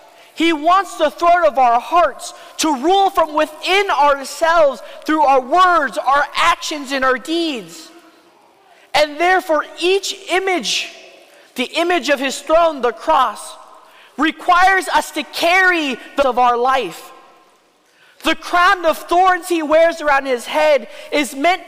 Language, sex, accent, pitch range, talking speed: English, male, American, 275-345 Hz, 140 wpm